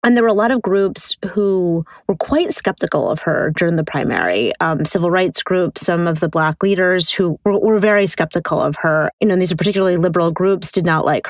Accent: American